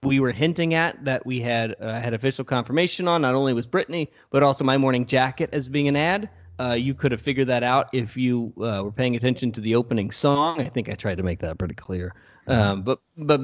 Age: 30-49